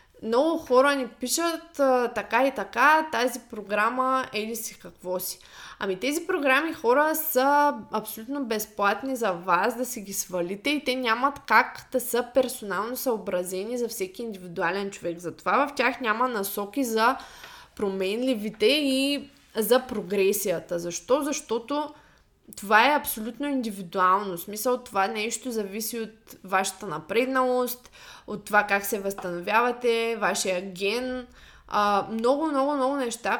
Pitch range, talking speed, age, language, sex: 195-255 Hz, 130 wpm, 20-39, Bulgarian, female